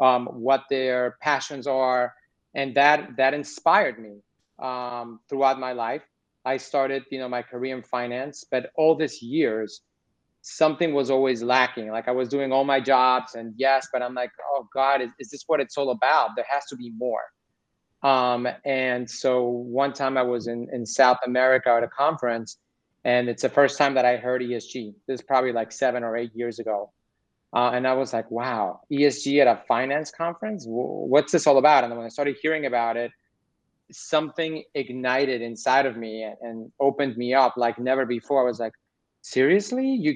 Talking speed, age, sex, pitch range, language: 195 wpm, 30-49, male, 120-140 Hz, English